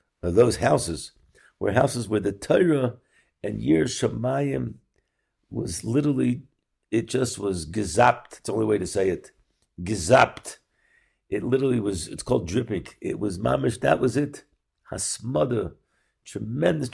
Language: English